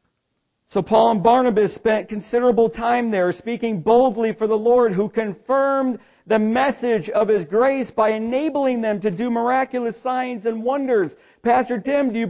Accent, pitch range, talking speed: American, 200-255 Hz, 160 wpm